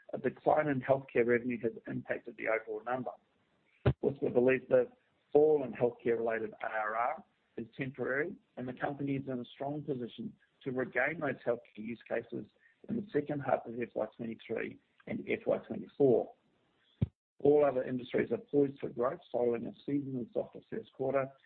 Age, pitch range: 50-69, 120-140 Hz